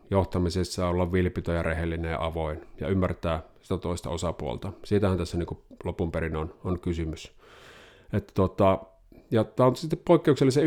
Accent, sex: native, male